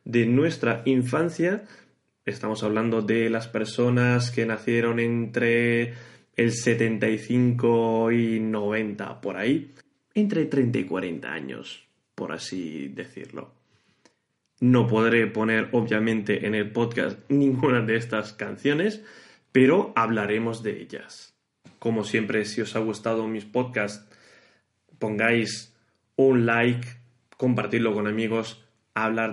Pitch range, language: 110-125 Hz, Czech